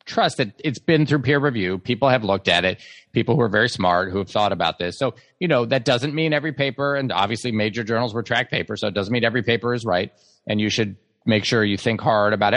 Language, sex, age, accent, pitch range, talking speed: English, male, 30-49, American, 105-140 Hz, 260 wpm